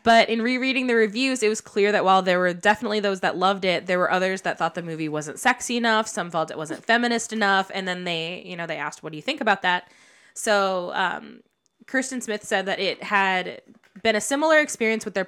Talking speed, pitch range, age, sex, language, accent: 235 wpm, 175-215 Hz, 20-39, female, English, American